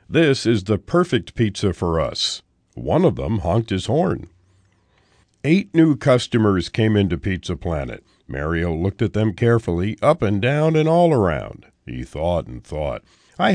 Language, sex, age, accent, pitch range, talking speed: English, male, 50-69, American, 85-135 Hz, 160 wpm